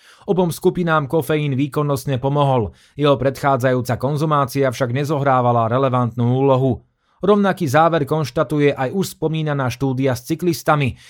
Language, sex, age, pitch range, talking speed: Slovak, male, 30-49, 125-155 Hz, 115 wpm